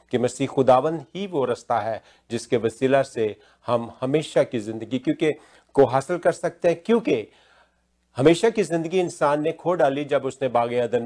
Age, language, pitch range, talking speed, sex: 50-69, Hindi, 120-155 Hz, 170 wpm, male